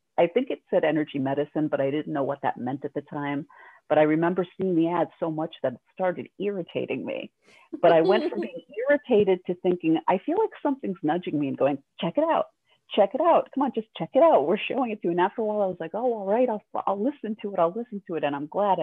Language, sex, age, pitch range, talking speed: English, female, 40-59, 145-190 Hz, 270 wpm